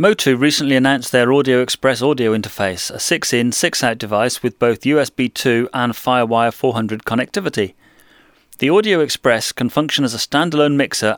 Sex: male